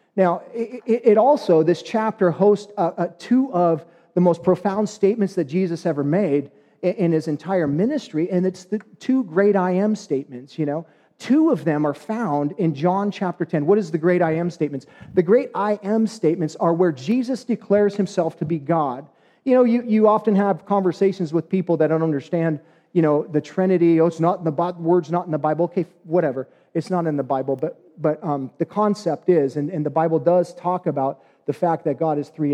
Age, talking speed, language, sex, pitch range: 40-59, 215 wpm, English, male, 155-200 Hz